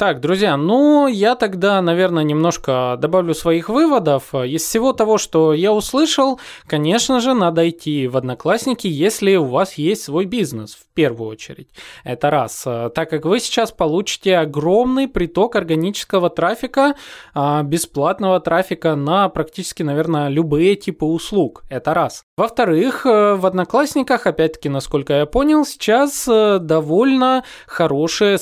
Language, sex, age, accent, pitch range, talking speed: Russian, male, 20-39, native, 145-205 Hz, 130 wpm